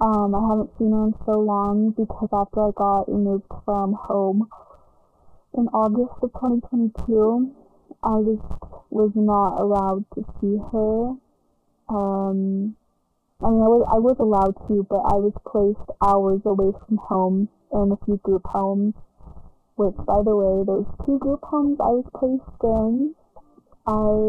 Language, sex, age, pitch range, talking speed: English, female, 20-39, 200-235 Hz, 150 wpm